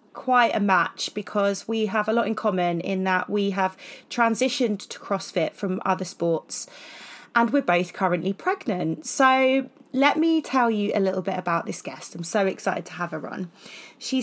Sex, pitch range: female, 185-235 Hz